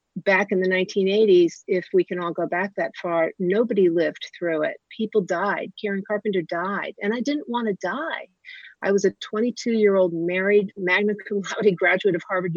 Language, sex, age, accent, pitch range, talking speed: English, female, 50-69, American, 180-220 Hz, 190 wpm